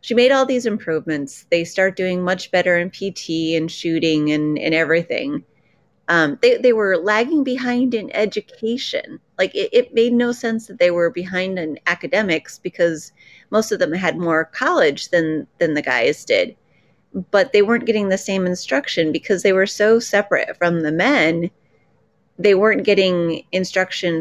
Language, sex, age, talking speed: English, female, 30-49, 170 wpm